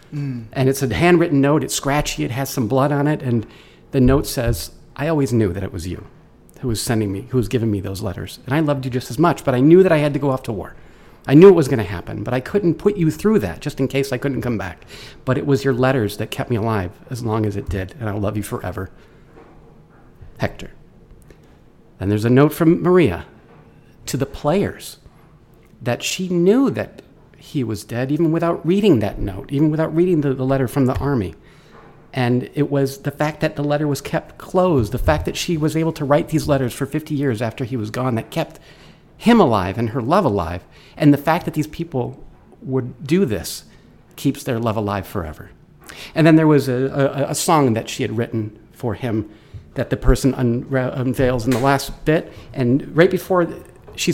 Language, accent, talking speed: English, American, 220 wpm